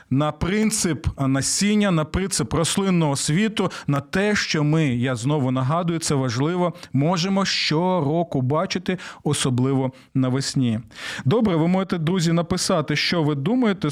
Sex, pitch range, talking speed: male, 140-195 Hz, 125 wpm